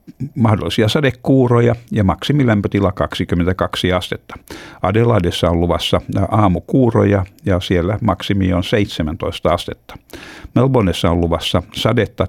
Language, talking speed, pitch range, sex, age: Finnish, 100 wpm, 90-115 Hz, male, 60-79